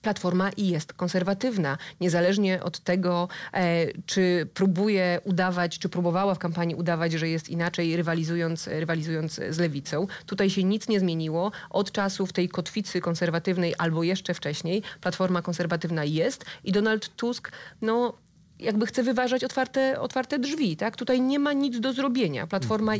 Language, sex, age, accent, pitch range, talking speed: Polish, female, 30-49, native, 165-205 Hz, 150 wpm